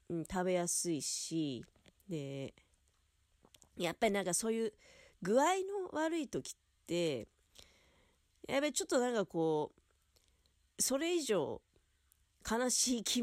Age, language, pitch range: 40-59, Japanese, 140-200 Hz